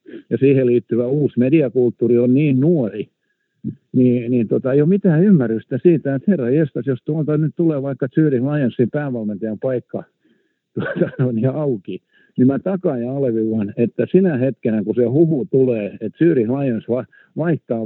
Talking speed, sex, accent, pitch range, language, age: 165 wpm, male, native, 120-150 Hz, Finnish, 60-79